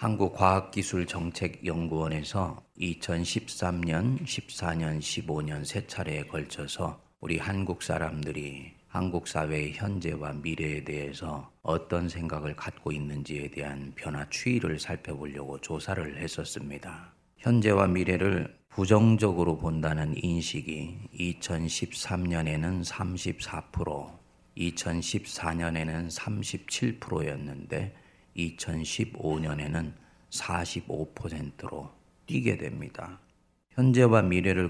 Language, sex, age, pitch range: Korean, male, 30-49, 75-95 Hz